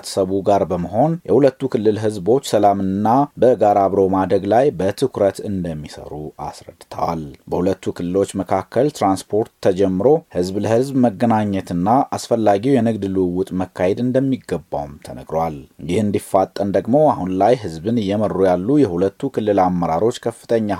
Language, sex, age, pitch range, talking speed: Amharic, male, 30-49, 90-115 Hz, 115 wpm